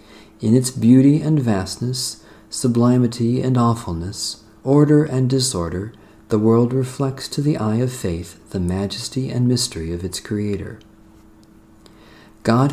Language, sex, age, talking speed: English, male, 50-69, 125 wpm